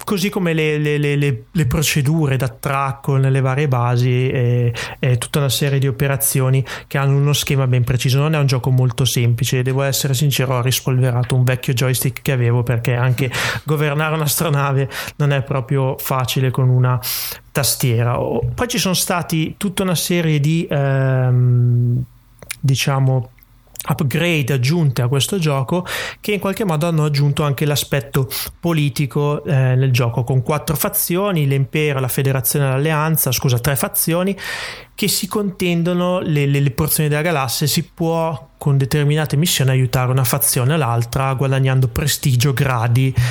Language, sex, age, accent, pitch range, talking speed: Italian, male, 30-49, native, 130-155 Hz, 155 wpm